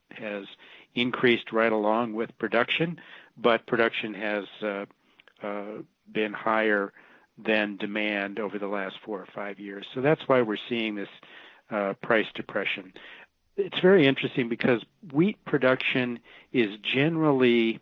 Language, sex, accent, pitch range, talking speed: English, male, American, 105-120 Hz, 130 wpm